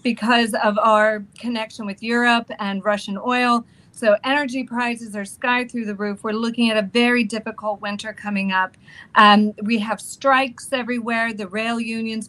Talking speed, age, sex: 165 wpm, 40-59, female